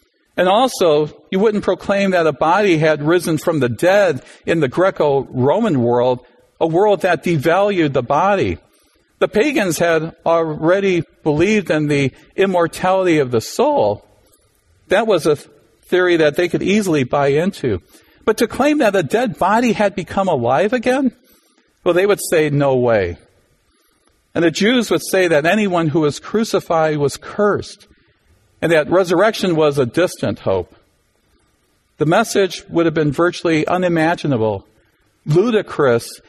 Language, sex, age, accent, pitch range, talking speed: English, male, 50-69, American, 150-195 Hz, 145 wpm